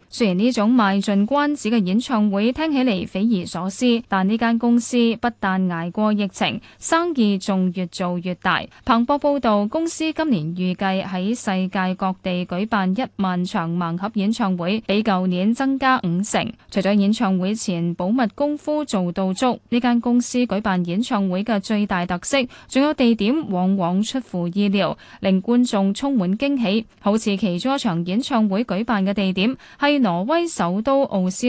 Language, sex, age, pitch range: Chinese, female, 10-29, 185-240 Hz